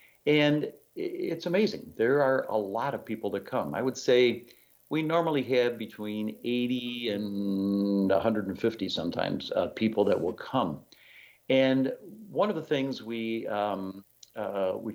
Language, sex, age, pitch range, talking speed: English, male, 50-69, 100-130 Hz, 145 wpm